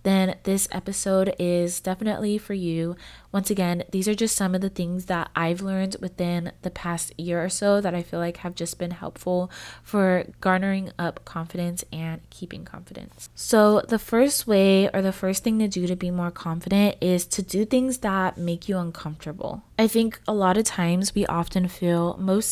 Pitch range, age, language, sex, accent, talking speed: 175-195 Hz, 20-39, English, female, American, 190 wpm